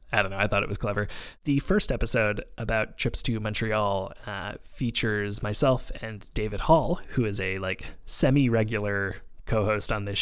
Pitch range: 105-150 Hz